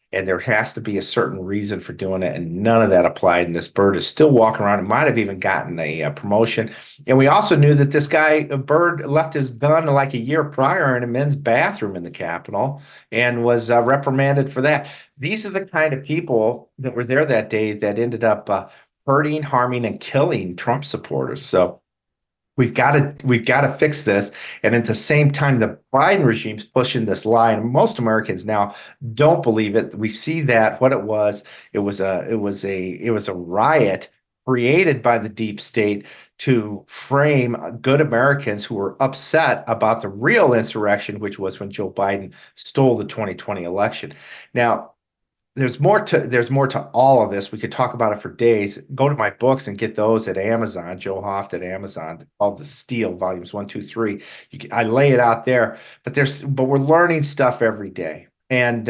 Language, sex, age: English, male, 50-69